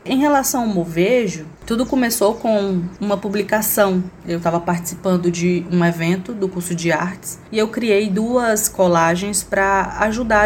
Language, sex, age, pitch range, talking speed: Portuguese, female, 20-39, 175-215 Hz, 150 wpm